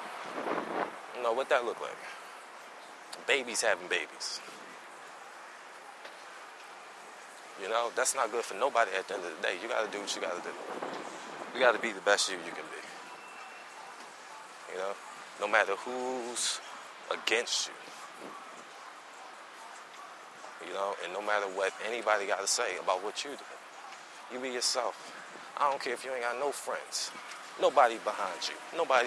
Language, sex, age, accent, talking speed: English, male, 20-39, American, 150 wpm